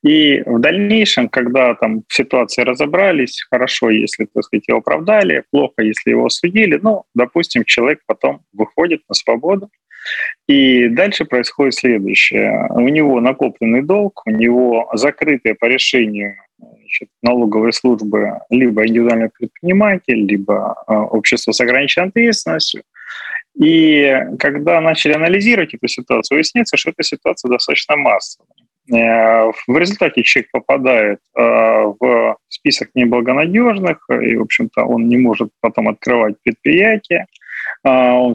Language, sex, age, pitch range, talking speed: Russian, male, 20-39, 115-175 Hz, 120 wpm